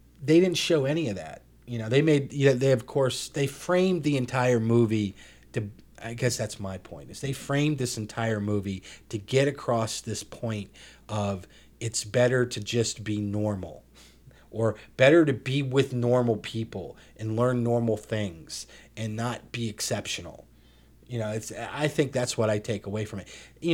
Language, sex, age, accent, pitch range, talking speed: English, male, 30-49, American, 100-125 Hz, 180 wpm